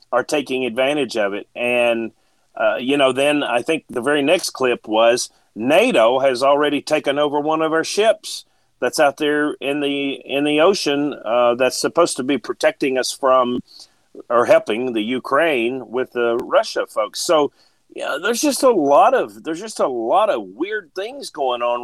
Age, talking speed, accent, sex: 50-69, 180 wpm, American, male